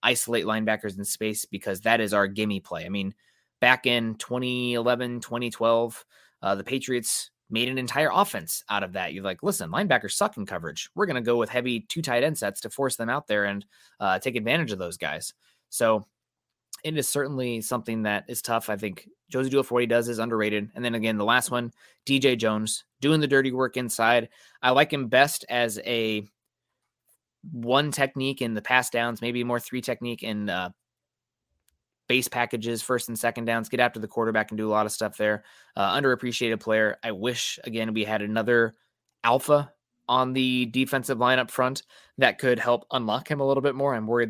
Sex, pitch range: male, 110-125 Hz